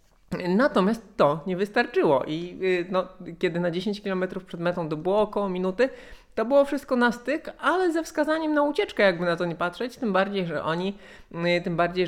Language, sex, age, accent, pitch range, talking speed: Polish, male, 20-39, native, 145-200 Hz, 165 wpm